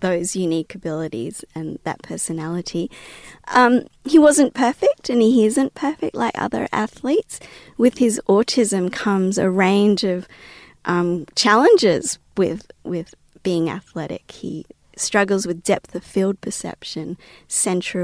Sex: female